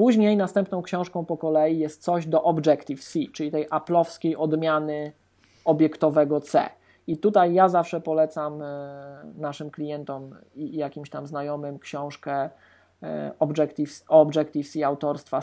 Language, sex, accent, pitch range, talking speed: Polish, male, native, 145-170 Hz, 115 wpm